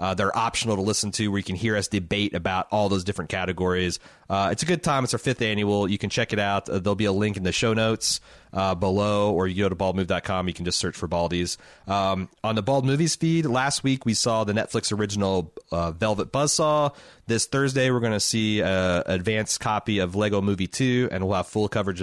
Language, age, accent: English, 30-49, American